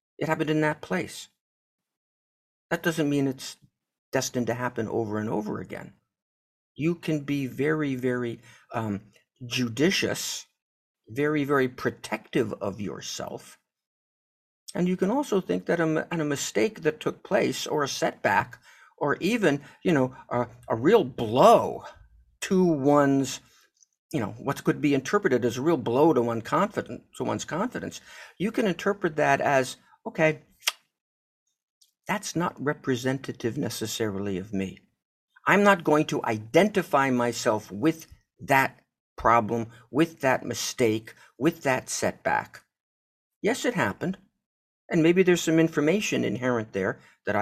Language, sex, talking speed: English, male, 135 wpm